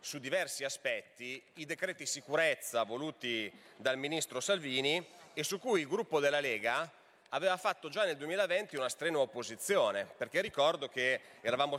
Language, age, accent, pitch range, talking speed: Italian, 30-49, native, 140-200 Hz, 150 wpm